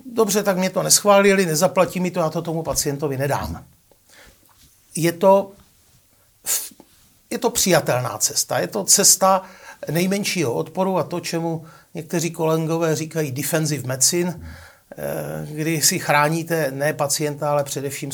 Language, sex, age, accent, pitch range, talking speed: Czech, male, 60-79, native, 150-185 Hz, 130 wpm